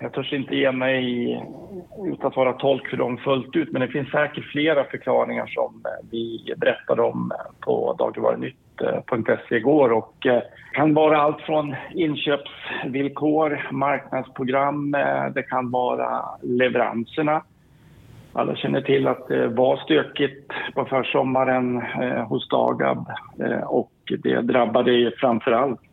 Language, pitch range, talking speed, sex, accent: Swedish, 120-145 Hz, 125 wpm, male, Norwegian